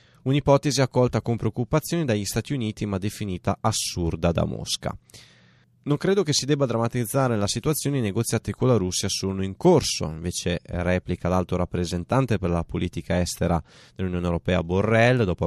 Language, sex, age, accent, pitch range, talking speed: Italian, male, 20-39, native, 90-125 Hz, 155 wpm